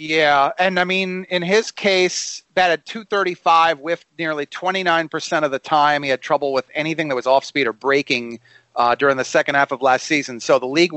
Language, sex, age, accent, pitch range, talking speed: English, male, 40-59, American, 150-185 Hz, 205 wpm